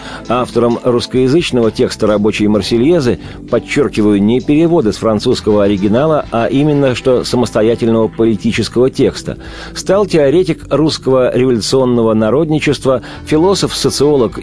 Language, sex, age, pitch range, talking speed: Russian, male, 50-69, 105-150 Hz, 95 wpm